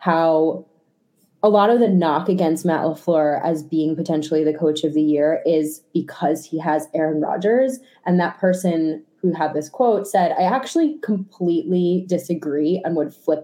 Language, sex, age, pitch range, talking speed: English, female, 20-39, 160-200 Hz, 170 wpm